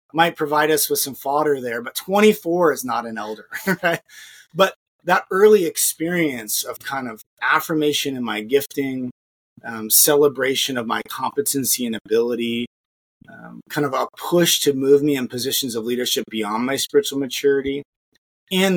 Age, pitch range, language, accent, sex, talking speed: 30-49, 125-160 Hz, English, American, male, 155 wpm